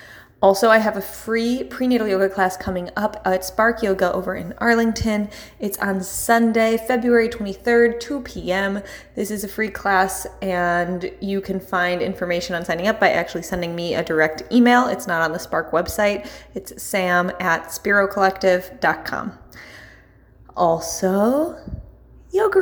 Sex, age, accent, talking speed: female, 20-39, American, 145 wpm